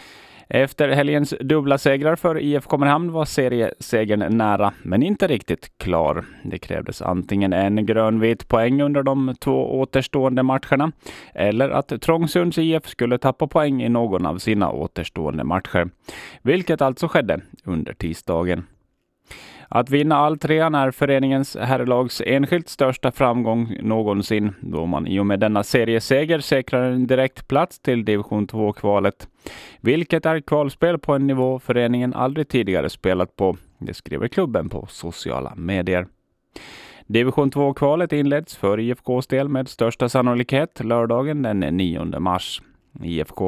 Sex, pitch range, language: male, 105-140 Hz, Swedish